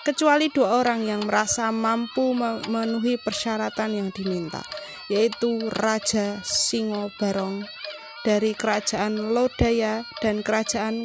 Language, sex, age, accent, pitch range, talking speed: Indonesian, female, 20-39, native, 210-255 Hz, 105 wpm